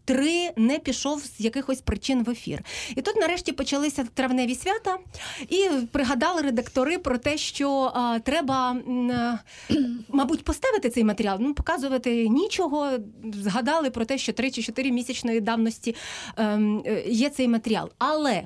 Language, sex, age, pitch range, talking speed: Ukrainian, female, 30-49, 225-290 Hz, 145 wpm